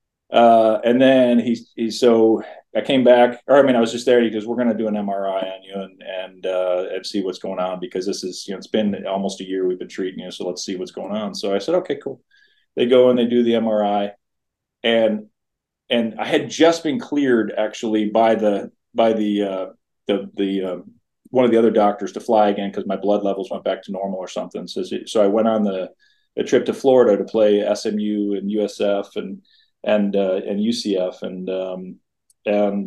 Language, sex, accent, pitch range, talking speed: English, male, American, 100-115 Hz, 225 wpm